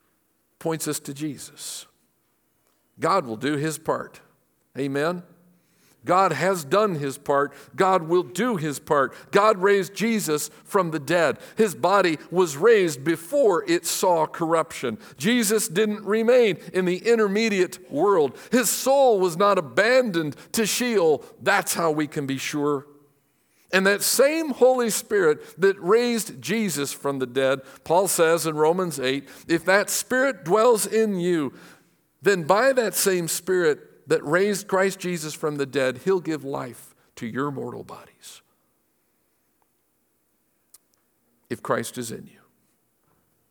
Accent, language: American, English